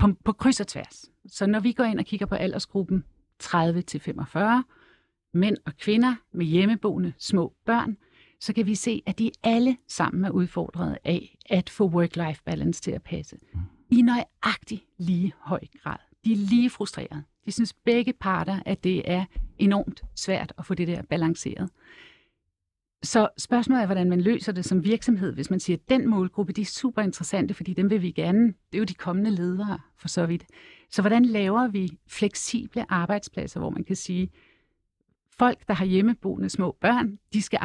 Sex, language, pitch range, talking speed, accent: female, Danish, 175-225 Hz, 180 wpm, native